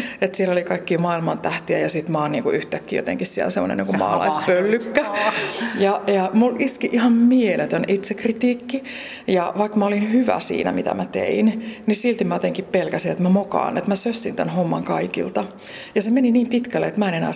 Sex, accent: female, native